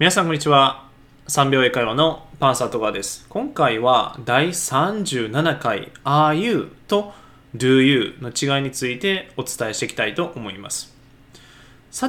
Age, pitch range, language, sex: 20-39, 130-155 Hz, Japanese, male